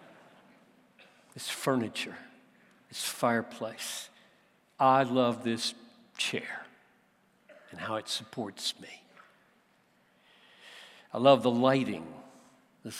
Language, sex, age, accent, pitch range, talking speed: English, male, 60-79, American, 110-135 Hz, 85 wpm